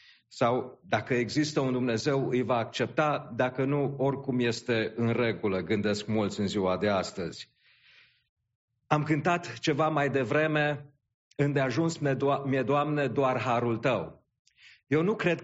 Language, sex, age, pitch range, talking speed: English, male, 40-59, 130-155 Hz, 135 wpm